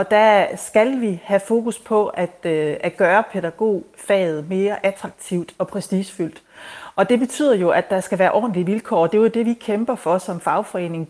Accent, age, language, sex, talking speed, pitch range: native, 30-49, Danish, female, 190 wpm, 175-225 Hz